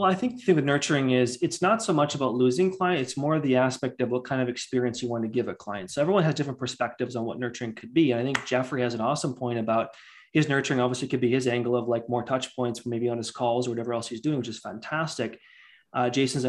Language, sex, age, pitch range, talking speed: English, male, 20-39, 120-140 Hz, 275 wpm